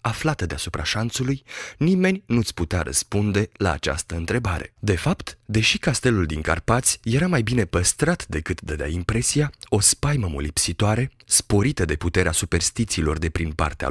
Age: 30-49